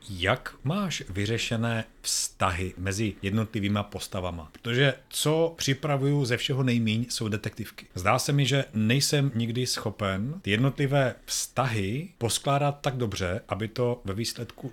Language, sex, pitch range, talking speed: Czech, male, 105-125 Hz, 130 wpm